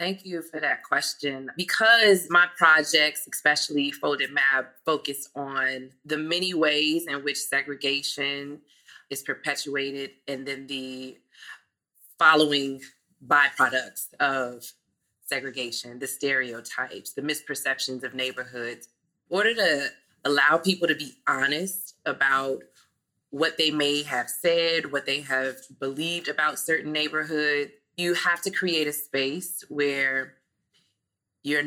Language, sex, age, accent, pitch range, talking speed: English, female, 20-39, American, 135-160 Hz, 120 wpm